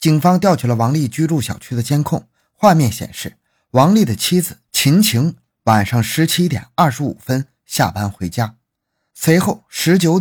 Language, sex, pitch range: Chinese, male, 120-175 Hz